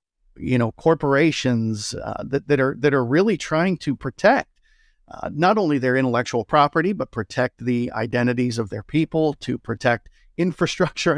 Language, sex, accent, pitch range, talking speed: English, male, American, 125-155 Hz, 155 wpm